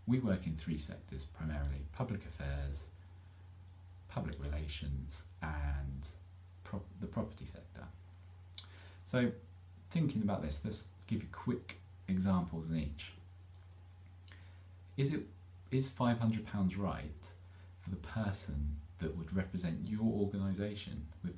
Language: English